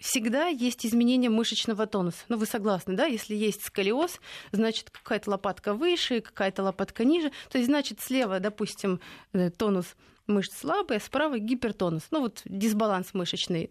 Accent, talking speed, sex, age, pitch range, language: native, 155 wpm, female, 30-49, 200-245 Hz, Russian